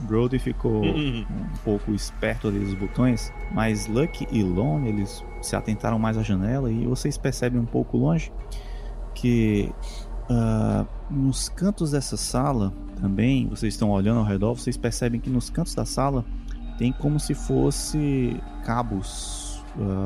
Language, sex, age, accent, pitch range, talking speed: Portuguese, male, 20-39, Brazilian, 110-145 Hz, 145 wpm